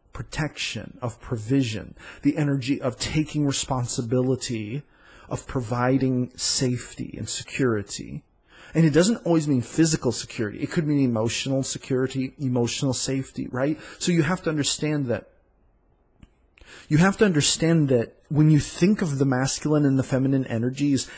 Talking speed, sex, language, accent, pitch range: 140 wpm, male, English, American, 115-145 Hz